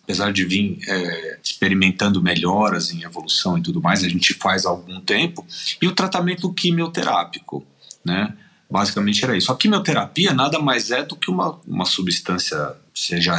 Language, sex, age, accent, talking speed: Portuguese, male, 40-59, Brazilian, 155 wpm